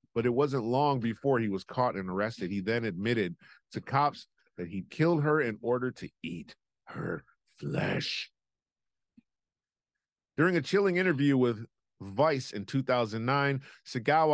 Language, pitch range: English, 105-150 Hz